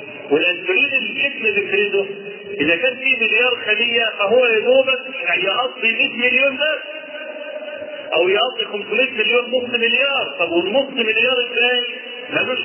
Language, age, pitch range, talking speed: Arabic, 40-59, 220-305 Hz, 120 wpm